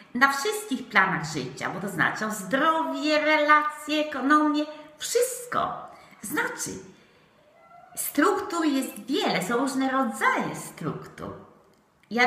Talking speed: 105 wpm